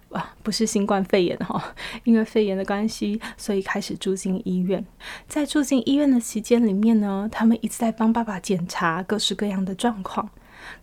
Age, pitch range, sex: 20-39, 195-235 Hz, female